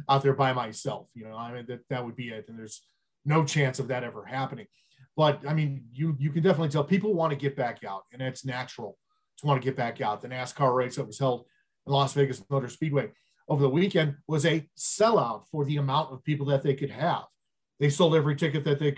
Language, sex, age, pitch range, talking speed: English, male, 40-59, 130-160 Hz, 240 wpm